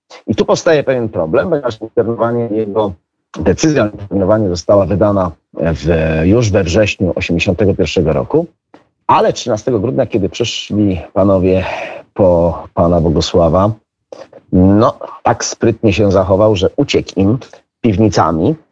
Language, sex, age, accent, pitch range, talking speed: Polish, male, 40-59, native, 95-125 Hz, 105 wpm